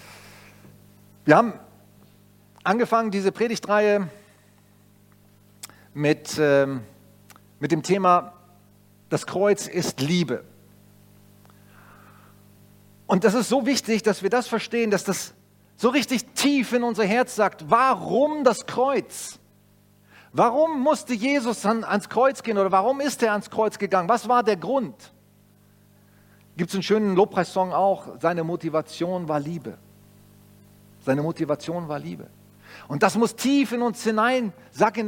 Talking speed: 130 wpm